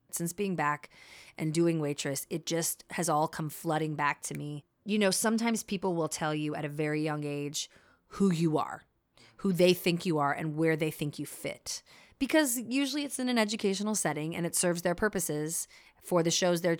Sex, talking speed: female, 205 wpm